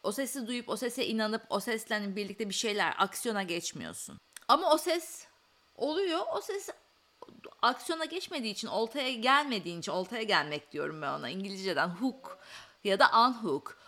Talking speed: 150 wpm